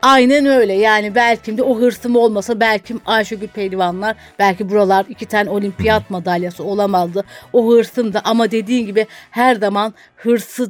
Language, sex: Turkish, female